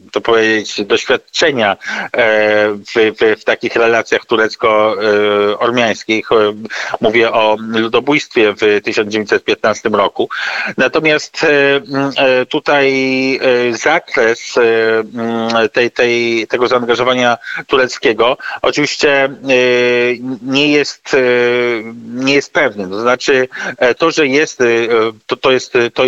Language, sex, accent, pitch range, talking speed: Polish, male, native, 115-135 Hz, 85 wpm